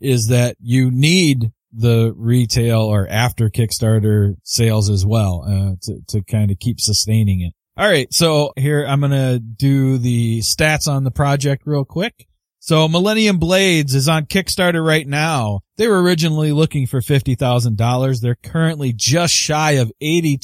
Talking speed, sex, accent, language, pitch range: 160 wpm, male, American, English, 115-155 Hz